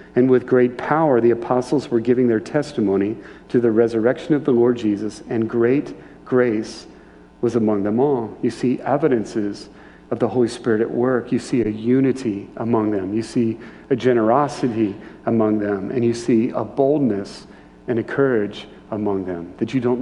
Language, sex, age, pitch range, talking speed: English, male, 40-59, 110-130 Hz, 175 wpm